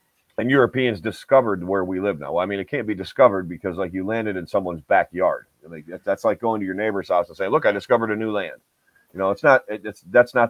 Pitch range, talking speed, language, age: 95-120 Hz, 250 wpm, English, 40-59